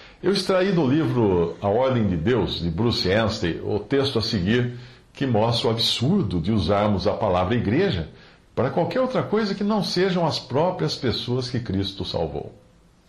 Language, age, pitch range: Portuguese, 60-79, 95-130 Hz